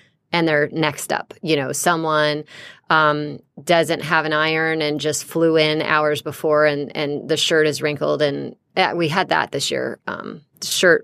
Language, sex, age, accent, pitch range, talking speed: English, female, 30-49, American, 150-175 Hz, 180 wpm